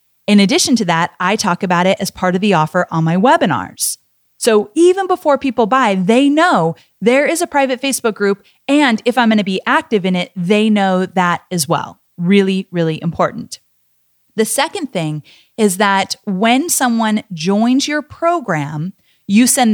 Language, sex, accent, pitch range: English, female, American, 185-245 Hz